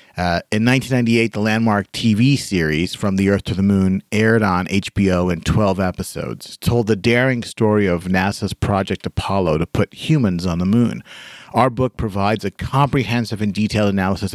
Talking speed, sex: 170 wpm, male